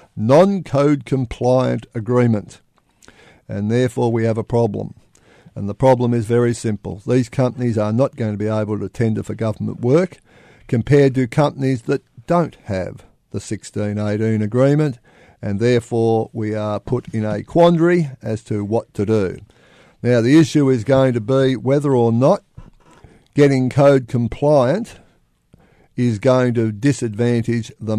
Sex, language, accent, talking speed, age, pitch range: male, English, Australian, 140 wpm, 50-69, 110-130 Hz